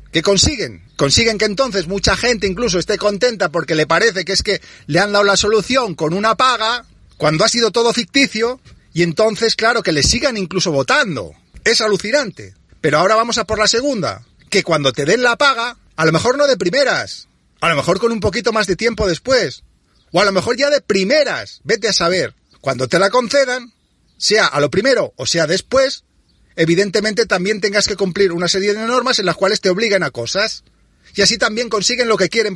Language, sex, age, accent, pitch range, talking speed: Spanish, male, 40-59, Spanish, 185-245 Hz, 205 wpm